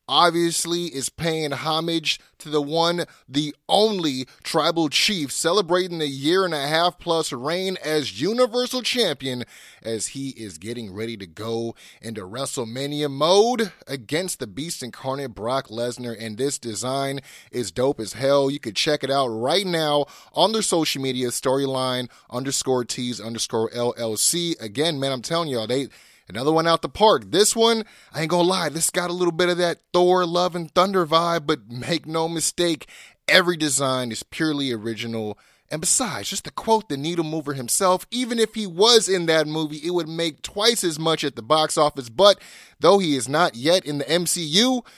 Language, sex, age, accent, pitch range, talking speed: English, male, 30-49, American, 130-180 Hz, 180 wpm